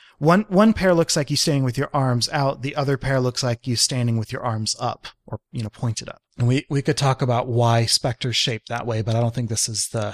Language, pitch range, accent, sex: English, 120-145 Hz, American, male